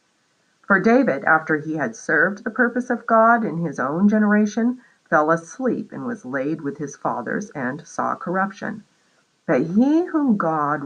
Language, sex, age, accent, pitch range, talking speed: English, female, 50-69, American, 170-245 Hz, 160 wpm